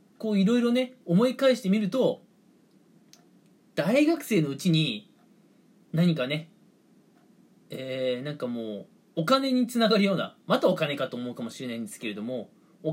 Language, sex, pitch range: Japanese, male, 160-240 Hz